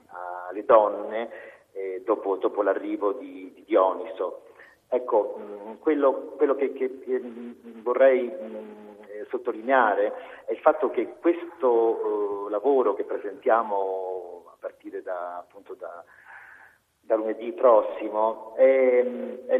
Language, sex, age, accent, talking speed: Italian, male, 50-69, native, 100 wpm